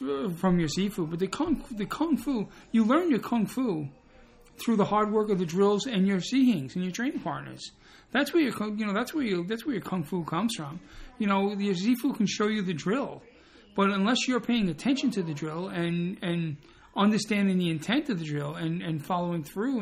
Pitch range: 185-240 Hz